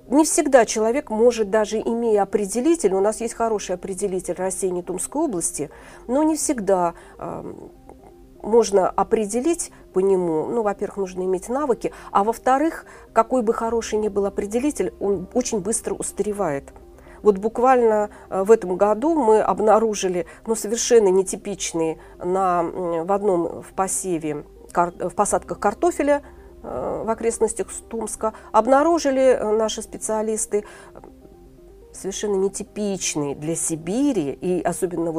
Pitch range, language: 185-235 Hz, Russian